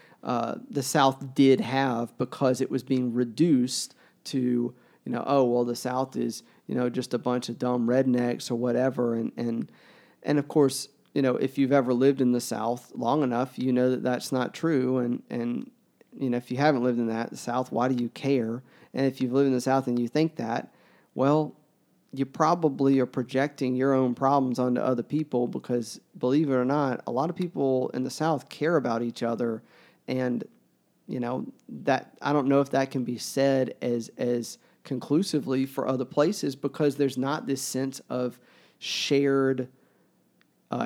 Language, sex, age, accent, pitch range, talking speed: English, male, 40-59, American, 120-140 Hz, 190 wpm